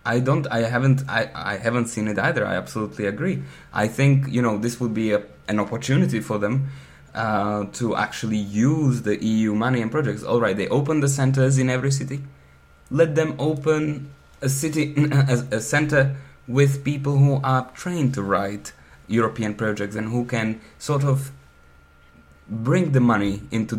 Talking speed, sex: 170 wpm, male